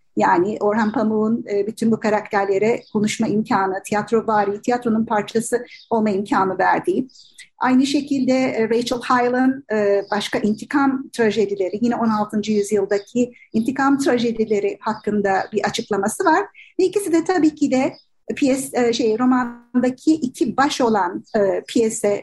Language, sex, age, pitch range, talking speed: Turkish, female, 50-69, 215-270 Hz, 115 wpm